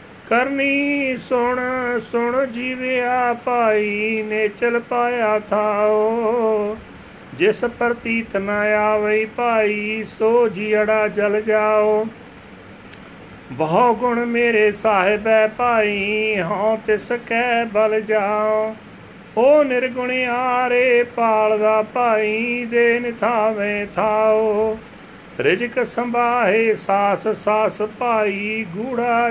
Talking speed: 90 wpm